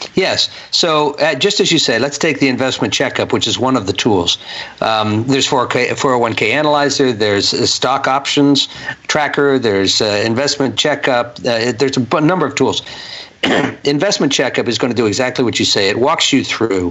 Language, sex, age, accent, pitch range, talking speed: English, male, 50-69, American, 115-145 Hz, 175 wpm